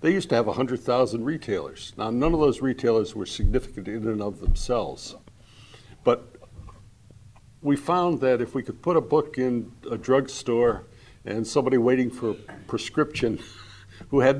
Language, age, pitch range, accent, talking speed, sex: English, 60-79, 110-135 Hz, American, 165 wpm, male